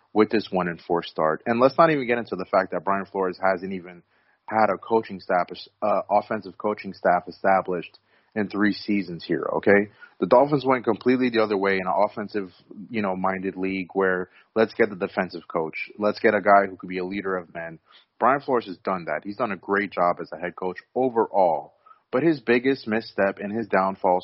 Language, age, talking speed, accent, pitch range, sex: English, 30-49, 215 wpm, American, 90-110 Hz, male